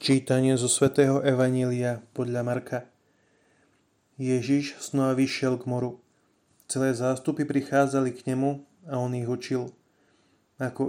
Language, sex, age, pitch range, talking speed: Slovak, male, 30-49, 125-140 Hz, 115 wpm